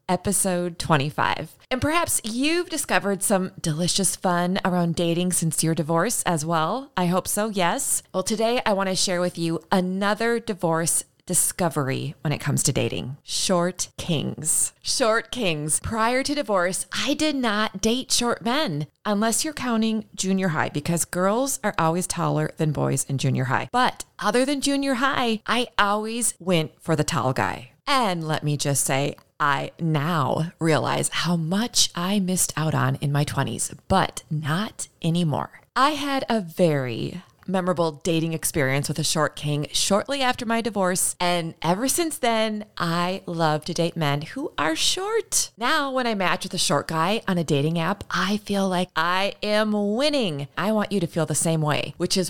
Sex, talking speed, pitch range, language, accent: female, 175 wpm, 155-215 Hz, English, American